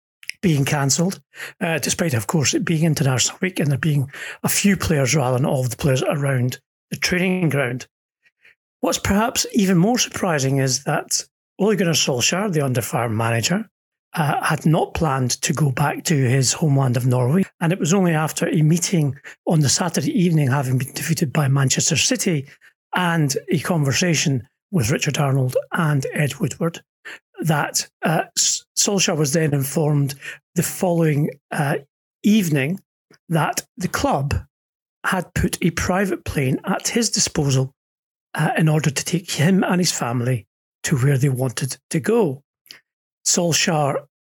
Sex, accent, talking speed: male, British, 155 wpm